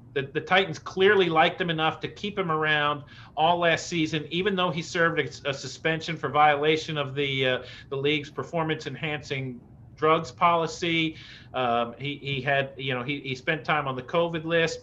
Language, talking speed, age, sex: English, 185 wpm, 40-59, male